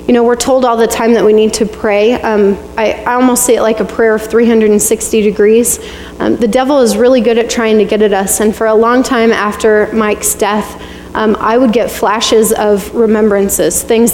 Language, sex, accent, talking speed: English, female, American, 220 wpm